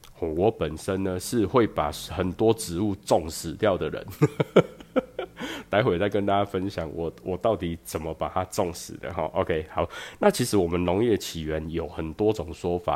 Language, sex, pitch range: Chinese, male, 85-110 Hz